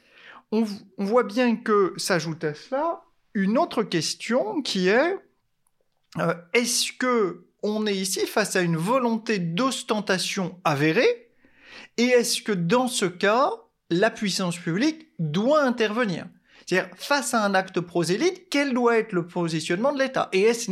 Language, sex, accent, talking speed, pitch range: French, male, French, 145 wpm, 170-255 Hz